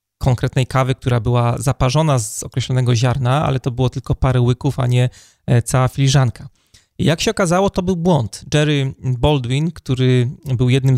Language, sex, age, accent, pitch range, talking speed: Polish, male, 30-49, native, 125-150 Hz, 160 wpm